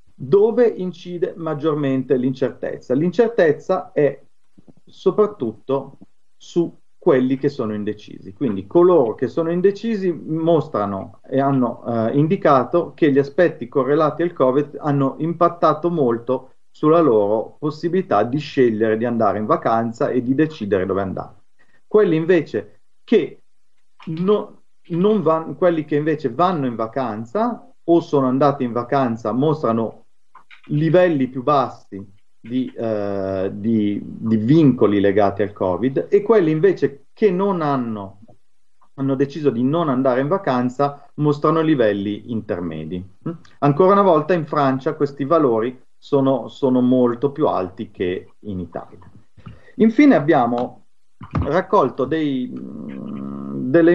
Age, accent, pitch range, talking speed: 40-59, native, 115-170 Hz, 120 wpm